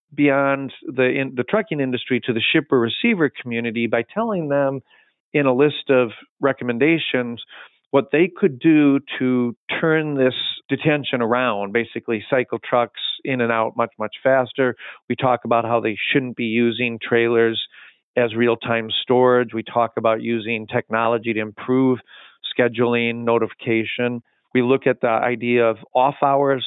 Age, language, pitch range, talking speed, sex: 40-59, English, 115-140 Hz, 150 wpm, male